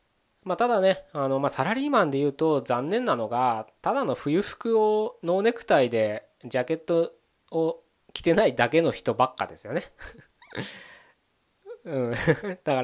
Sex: male